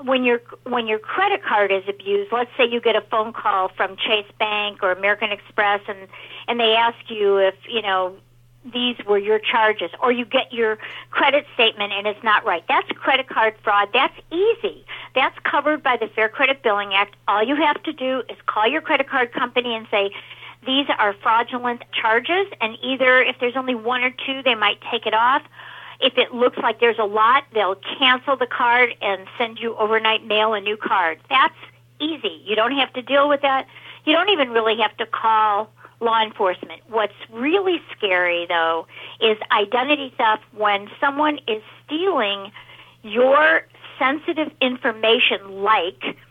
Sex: female